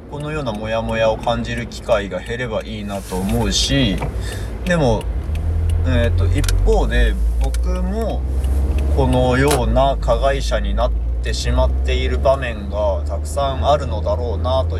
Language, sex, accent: Japanese, male, native